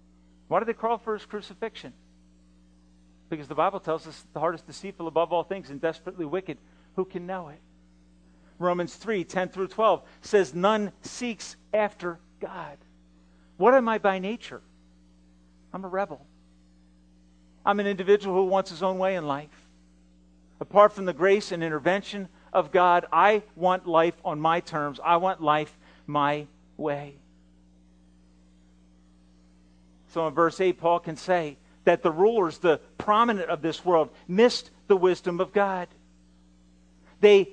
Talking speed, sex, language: 150 wpm, male, English